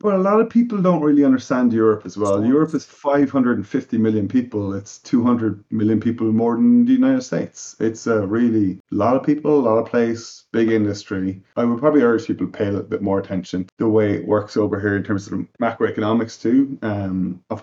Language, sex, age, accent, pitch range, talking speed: English, male, 30-49, Irish, 95-115 Hz, 220 wpm